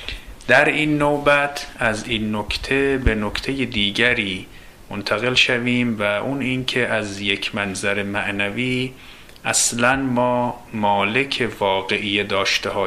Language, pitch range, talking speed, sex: Persian, 100-125 Hz, 105 wpm, male